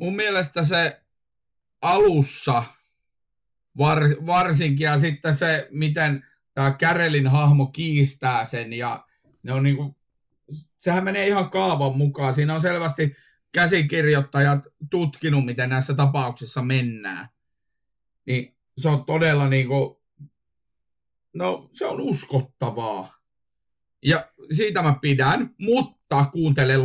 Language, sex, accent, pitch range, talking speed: Finnish, male, native, 135-160 Hz, 105 wpm